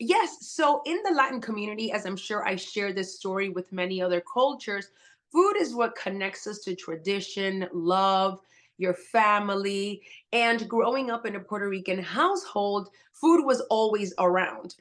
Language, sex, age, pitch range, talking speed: English, female, 30-49, 195-235 Hz, 160 wpm